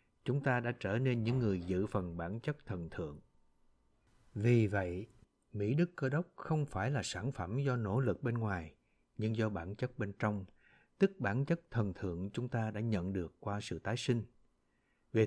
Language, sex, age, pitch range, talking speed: Vietnamese, male, 60-79, 95-135 Hz, 195 wpm